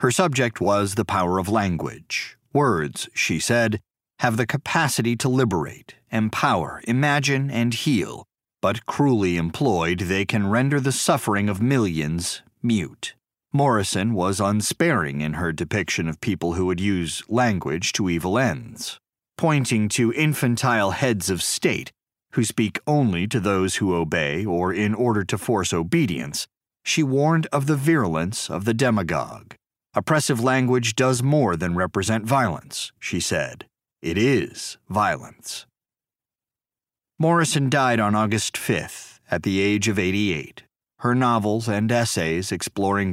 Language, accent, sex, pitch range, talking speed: English, American, male, 95-130 Hz, 140 wpm